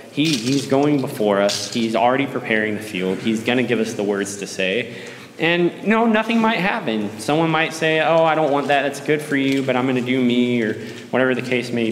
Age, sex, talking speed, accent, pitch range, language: 20-39, male, 230 wpm, American, 105-130 Hz, English